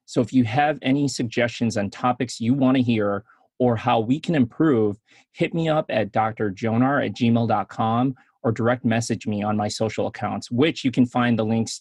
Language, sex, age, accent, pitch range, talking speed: English, male, 30-49, American, 110-125 Hz, 195 wpm